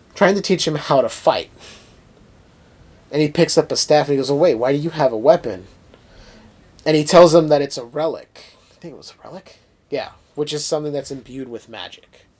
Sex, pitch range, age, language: male, 120-160 Hz, 30-49, English